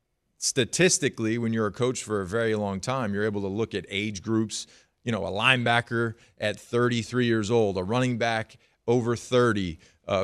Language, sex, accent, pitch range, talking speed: English, male, American, 105-125 Hz, 180 wpm